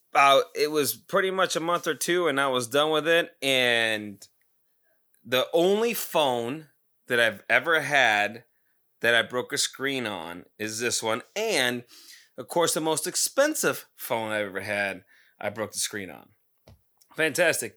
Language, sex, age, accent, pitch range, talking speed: English, male, 30-49, American, 115-155 Hz, 160 wpm